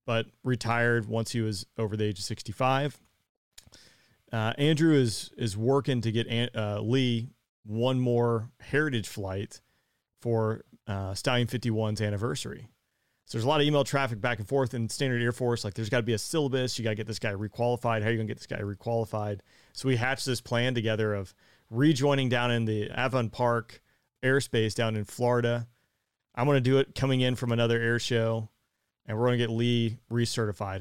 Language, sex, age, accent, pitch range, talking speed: English, male, 30-49, American, 110-130 Hz, 190 wpm